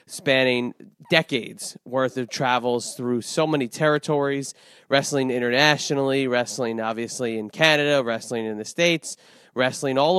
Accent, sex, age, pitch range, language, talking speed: American, male, 30-49, 120-145 Hz, English, 125 wpm